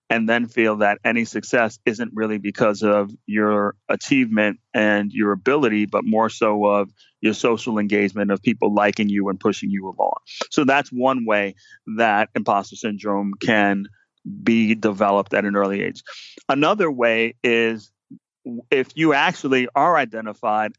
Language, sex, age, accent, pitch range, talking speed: English, male, 30-49, American, 105-120 Hz, 150 wpm